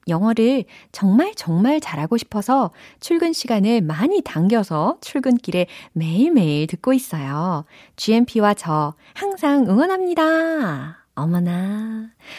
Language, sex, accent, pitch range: Korean, female, native, 160-225 Hz